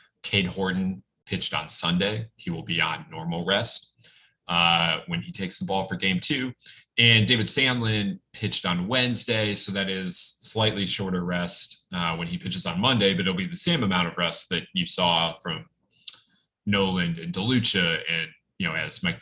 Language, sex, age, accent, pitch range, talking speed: English, male, 30-49, American, 90-120 Hz, 180 wpm